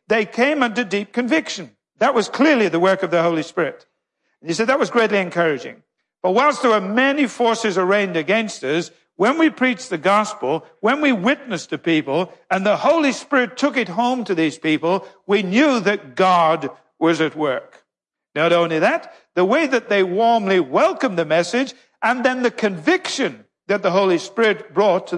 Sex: male